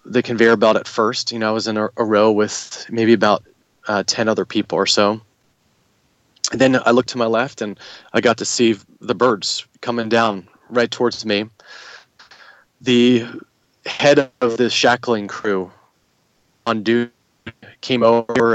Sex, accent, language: male, American, English